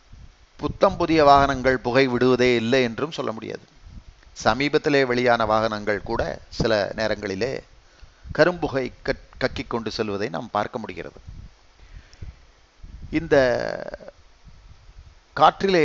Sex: male